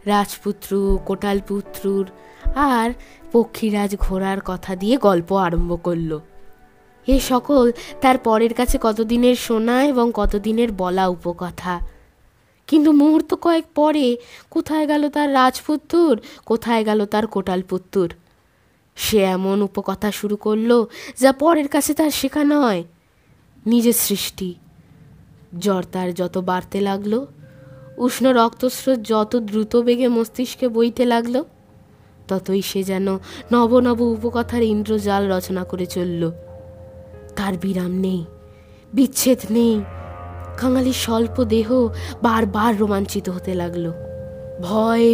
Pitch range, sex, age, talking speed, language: 180-240 Hz, female, 20-39, 100 wpm, Bengali